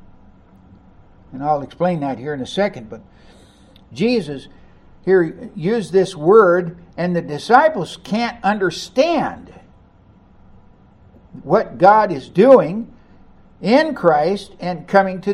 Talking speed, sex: 110 wpm, male